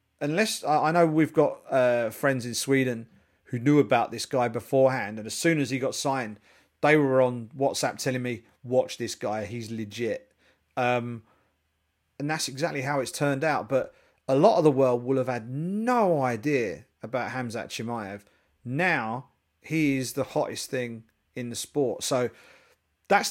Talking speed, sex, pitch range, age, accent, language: 170 wpm, male, 115-150 Hz, 40-59, British, English